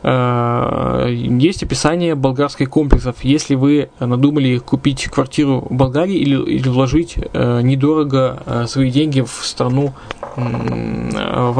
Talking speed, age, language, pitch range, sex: 105 wpm, 20-39, Russian, 135-160 Hz, male